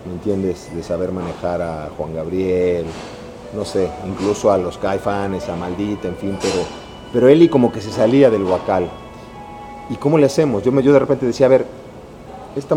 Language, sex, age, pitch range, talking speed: Spanish, male, 40-59, 90-130 Hz, 195 wpm